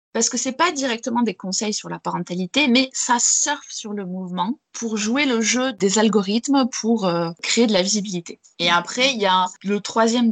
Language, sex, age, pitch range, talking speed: French, female, 20-39, 195-240 Hz, 205 wpm